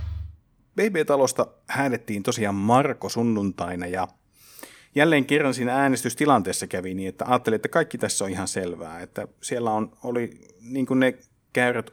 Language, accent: Finnish, native